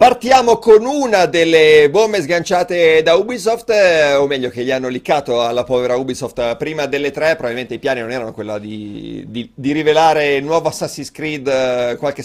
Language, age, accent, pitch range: Italian, 40-59, native, 125-185 Hz